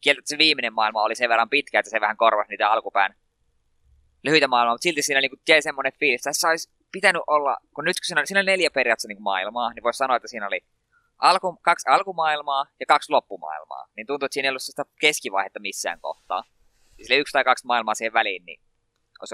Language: Finnish